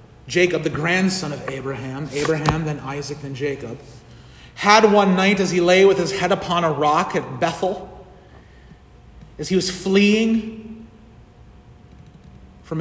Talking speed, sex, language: 135 wpm, male, English